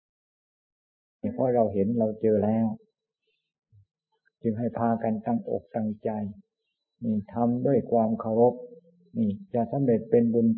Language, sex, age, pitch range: Thai, male, 60-79, 110-125 Hz